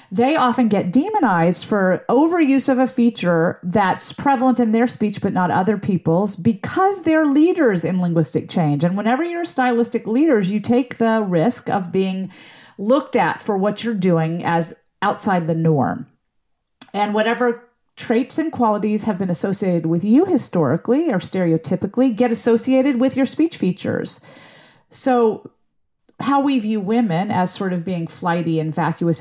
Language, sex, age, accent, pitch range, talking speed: English, female, 40-59, American, 170-240 Hz, 155 wpm